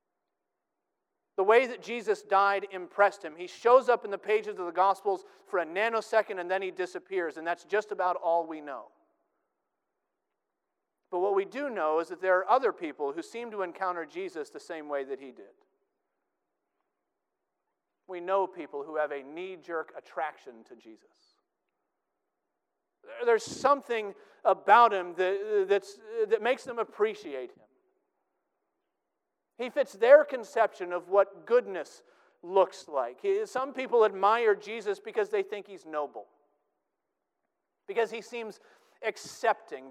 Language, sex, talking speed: English, male, 145 wpm